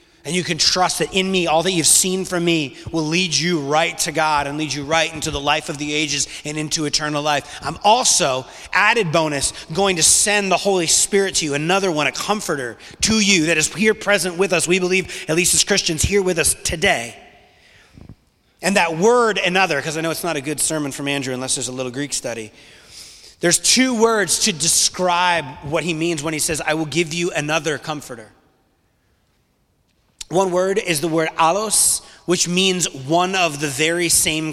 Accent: American